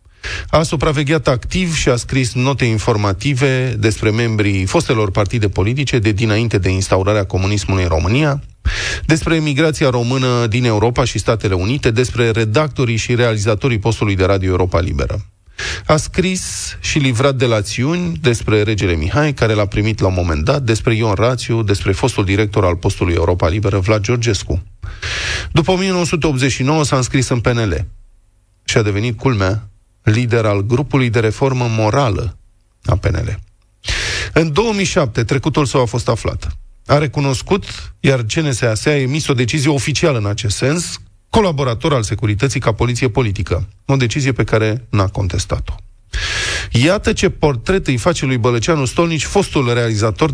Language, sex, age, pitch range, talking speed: Romanian, male, 30-49, 100-140 Hz, 150 wpm